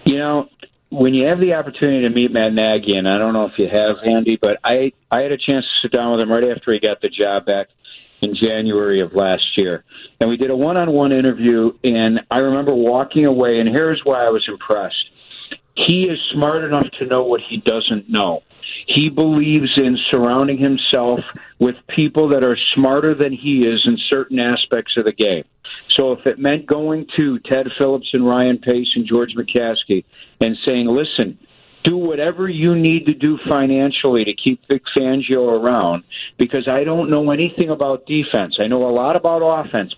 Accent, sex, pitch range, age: American, male, 120-150 Hz, 50-69